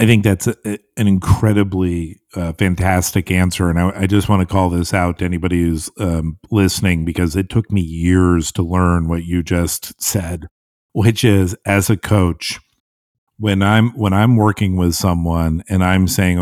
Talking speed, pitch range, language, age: 185 wpm, 85-100 Hz, English, 50-69